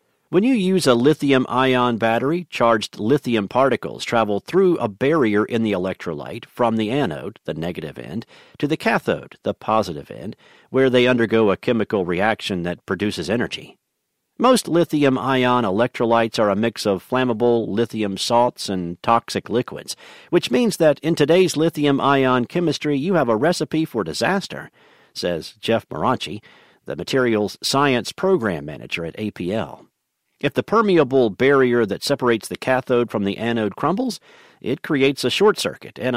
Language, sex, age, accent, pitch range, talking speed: English, male, 50-69, American, 115-160 Hz, 150 wpm